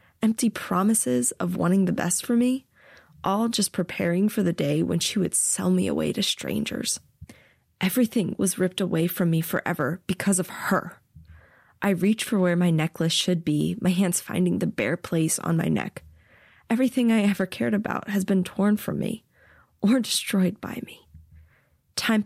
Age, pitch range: 20-39, 165-205 Hz